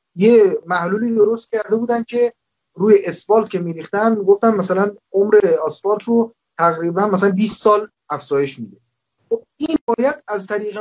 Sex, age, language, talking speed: male, 30-49, Persian, 135 wpm